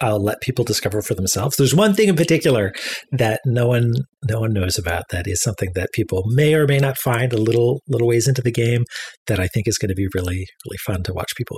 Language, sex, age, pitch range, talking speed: English, male, 30-49, 95-130 Hz, 250 wpm